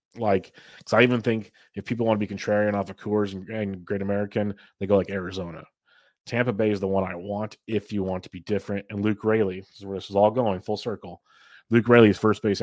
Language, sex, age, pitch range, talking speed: English, male, 30-49, 95-110 Hz, 245 wpm